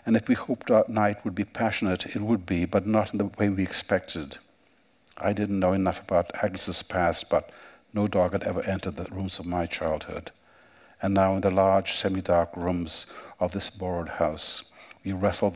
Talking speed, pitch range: 195 wpm, 85-100 Hz